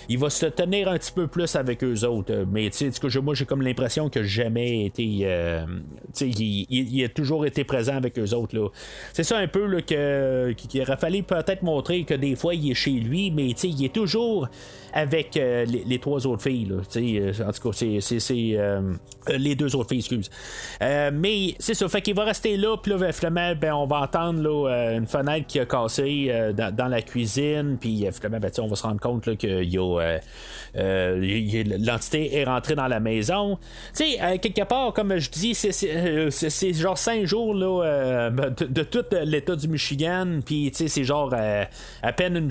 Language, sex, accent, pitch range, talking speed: French, male, Canadian, 120-175 Hz, 215 wpm